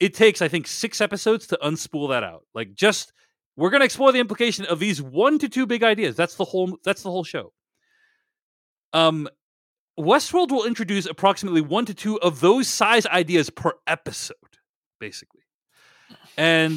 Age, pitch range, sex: 30-49, 140-220 Hz, male